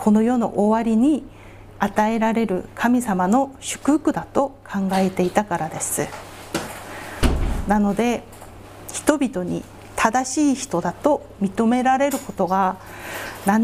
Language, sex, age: Japanese, female, 40-59